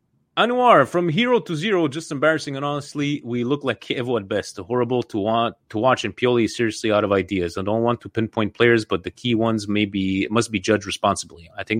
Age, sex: 30-49, male